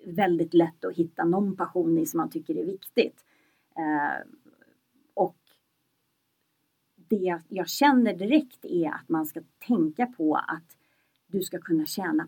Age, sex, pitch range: 30-49, female, 170-255 Hz